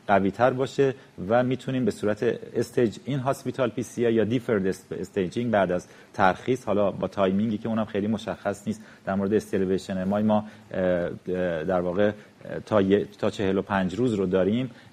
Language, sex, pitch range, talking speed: Persian, male, 100-120 Hz, 150 wpm